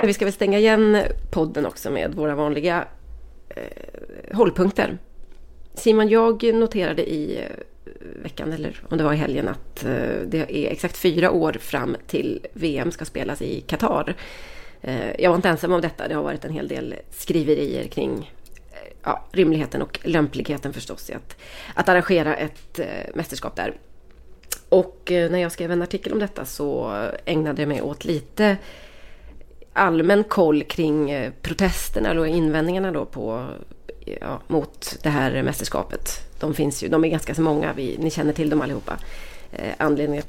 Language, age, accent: Swedish, 30-49, native